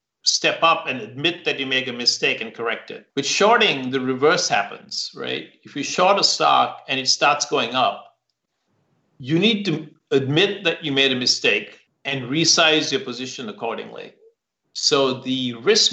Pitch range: 130-155 Hz